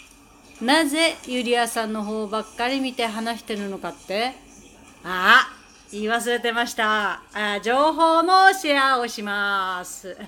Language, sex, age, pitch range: Japanese, female, 40-59, 215-300 Hz